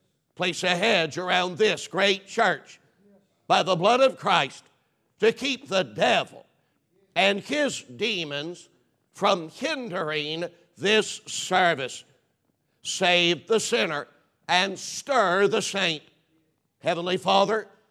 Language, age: English, 60-79